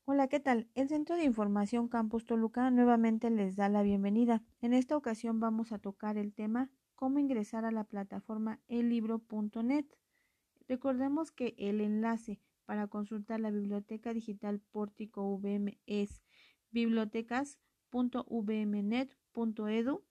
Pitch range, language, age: 205-245 Hz, Spanish, 40-59